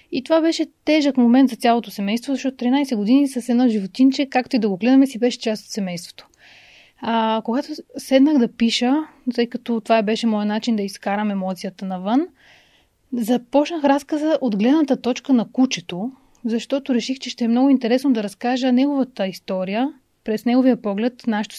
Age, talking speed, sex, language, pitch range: 30-49, 170 wpm, female, Bulgarian, 220-270 Hz